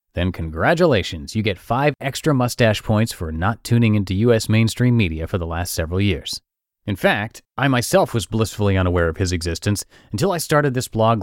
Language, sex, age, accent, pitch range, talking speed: English, male, 30-49, American, 95-135 Hz, 185 wpm